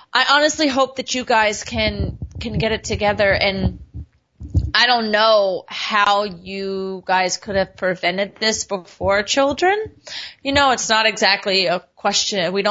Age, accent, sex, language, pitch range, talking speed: 30-49, American, female, English, 180-215 Hz, 145 wpm